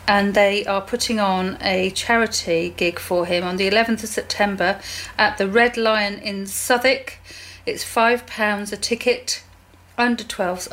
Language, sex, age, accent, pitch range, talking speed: English, female, 40-59, British, 200-255 Hz, 145 wpm